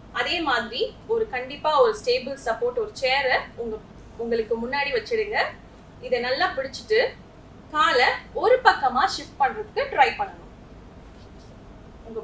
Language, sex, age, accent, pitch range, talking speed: English, female, 20-39, Indian, 255-420 Hz, 75 wpm